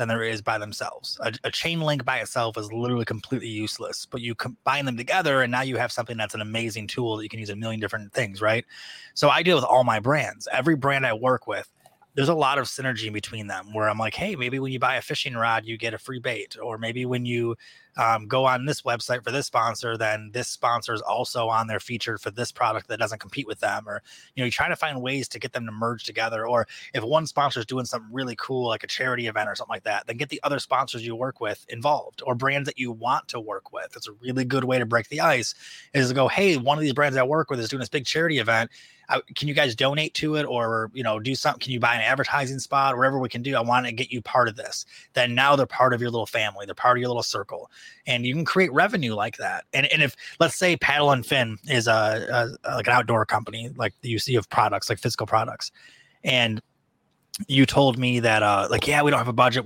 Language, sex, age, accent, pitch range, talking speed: English, male, 20-39, American, 115-135 Hz, 265 wpm